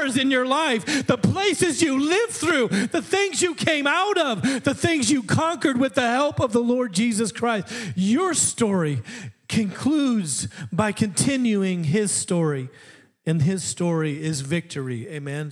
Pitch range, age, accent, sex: 125-180 Hz, 40-59, American, male